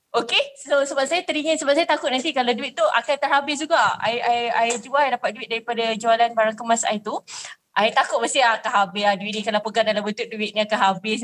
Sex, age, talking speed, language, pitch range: female, 20-39, 235 wpm, Malay, 230-295 Hz